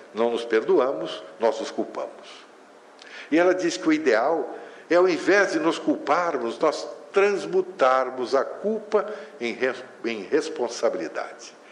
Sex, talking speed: male, 125 wpm